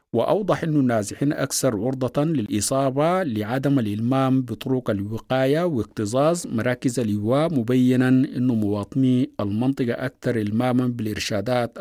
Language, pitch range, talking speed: English, 110-150 Hz, 100 wpm